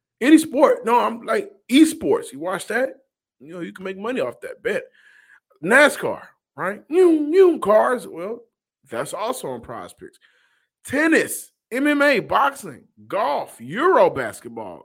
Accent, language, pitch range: American, English, 135-205 Hz